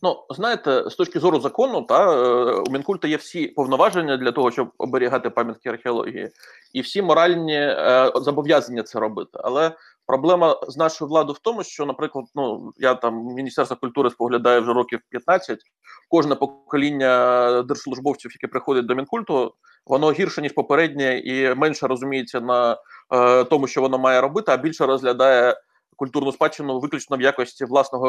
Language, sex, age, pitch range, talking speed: Ukrainian, male, 20-39, 125-155 Hz, 155 wpm